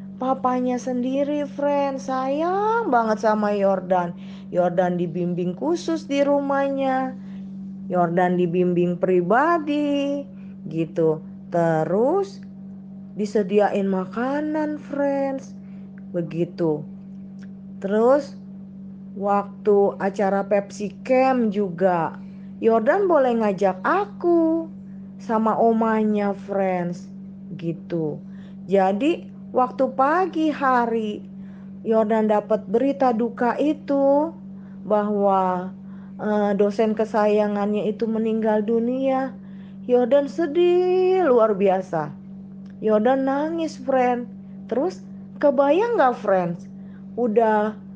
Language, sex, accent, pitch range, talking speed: Indonesian, female, native, 195-250 Hz, 80 wpm